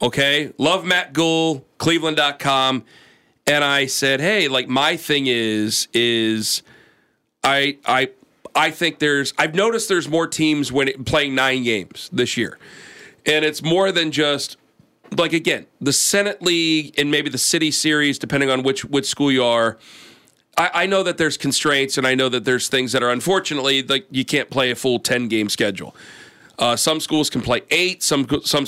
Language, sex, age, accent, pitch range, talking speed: English, male, 40-59, American, 130-155 Hz, 175 wpm